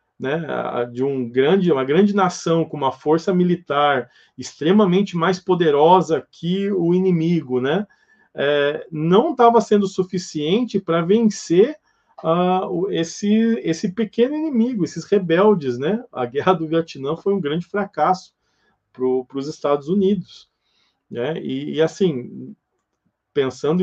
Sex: male